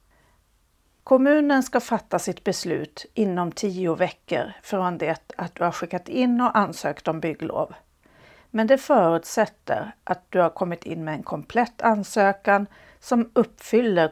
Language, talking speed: Swedish, 140 wpm